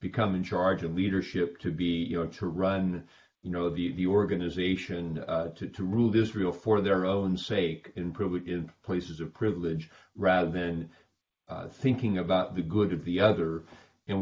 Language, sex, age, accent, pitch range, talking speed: English, male, 50-69, American, 90-105 Hz, 175 wpm